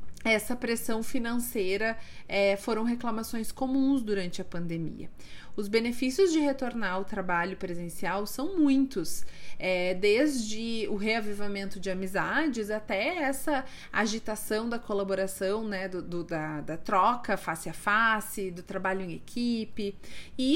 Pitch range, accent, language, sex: 195-260 Hz, Brazilian, Portuguese, female